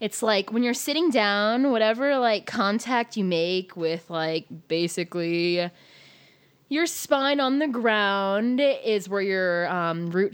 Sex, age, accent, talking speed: female, 20-39, American, 140 wpm